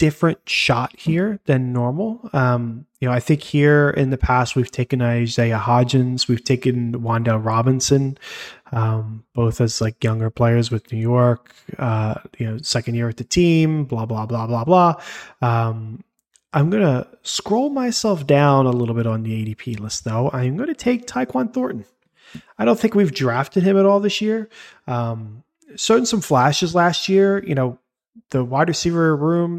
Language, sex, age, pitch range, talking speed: English, male, 20-39, 115-165 Hz, 170 wpm